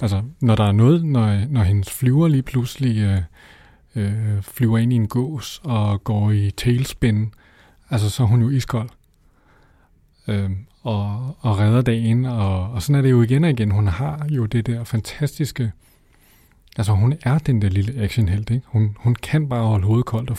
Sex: male